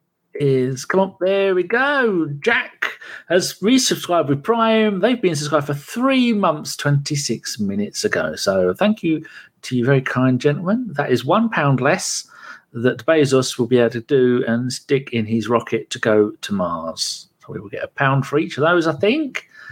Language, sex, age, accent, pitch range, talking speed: English, male, 50-69, British, 130-190 Hz, 185 wpm